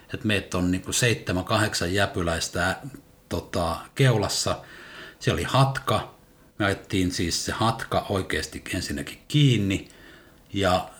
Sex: male